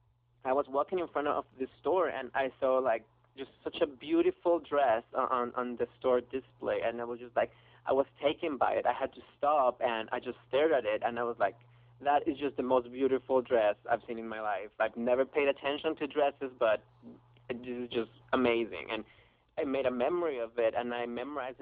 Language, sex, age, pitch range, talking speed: English, male, 30-49, 115-130 Hz, 220 wpm